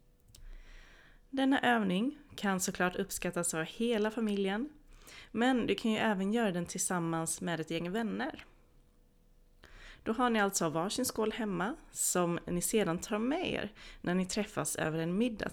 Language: Swedish